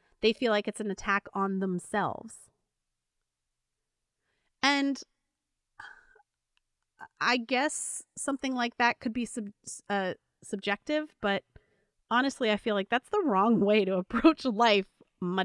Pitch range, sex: 195-255 Hz, female